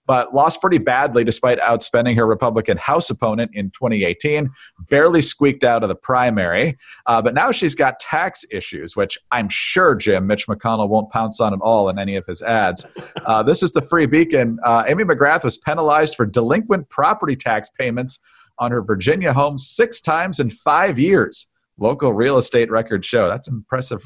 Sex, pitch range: male, 110-145 Hz